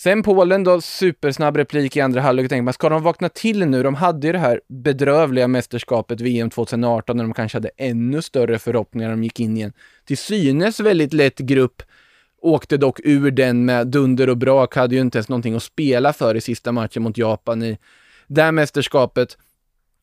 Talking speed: 200 wpm